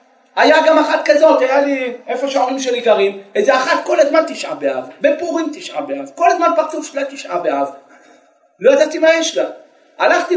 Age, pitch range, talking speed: 40-59, 265-320 Hz, 180 wpm